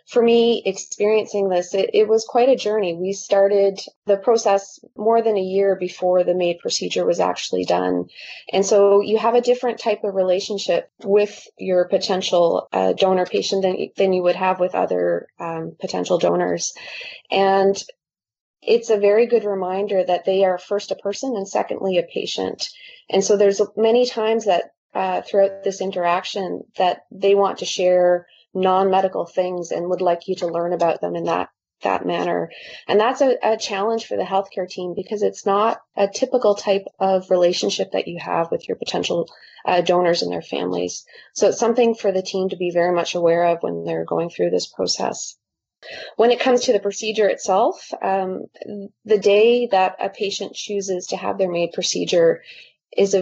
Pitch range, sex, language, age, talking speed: 180-210 Hz, female, English, 20-39, 185 wpm